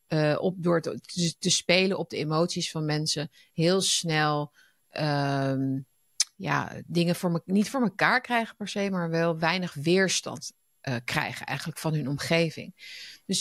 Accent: Dutch